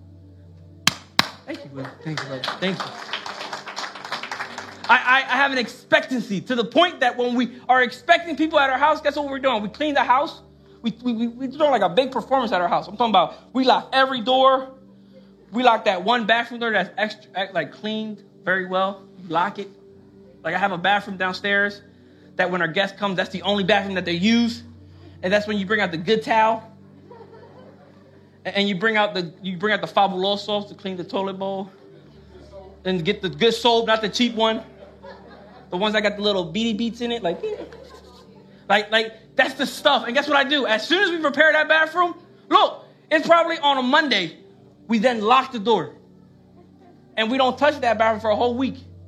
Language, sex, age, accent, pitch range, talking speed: English, male, 20-39, American, 185-255 Hz, 200 wpm